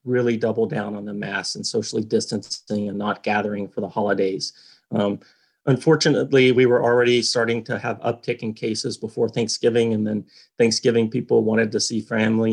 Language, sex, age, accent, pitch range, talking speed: English, male, 30-49, American, 105-120 Hz, 170 wpm